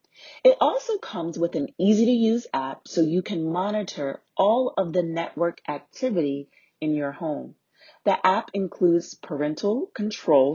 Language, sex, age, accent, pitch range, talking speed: English, female, 30-49, American, 150-210 Hz, 150 wpm